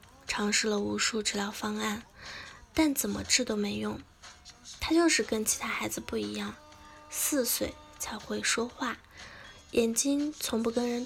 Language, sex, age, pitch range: Chinese, female, 10-29, 195-255 Hz